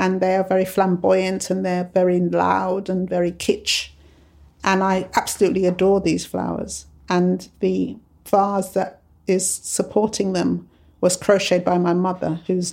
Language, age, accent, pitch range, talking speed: English, 50-69, British, 145-185 Hz, 145 wpm